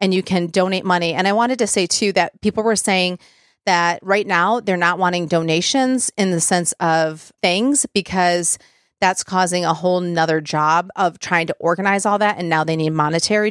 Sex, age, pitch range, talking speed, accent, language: female, 30-49, 175-215 Hz, 200 wpm, American, English